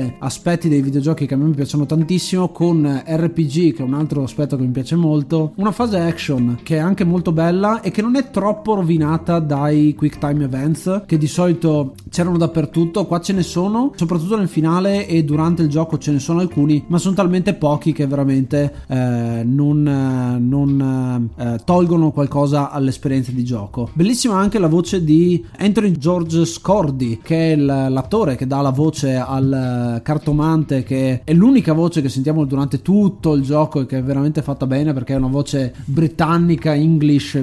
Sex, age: male, 30-49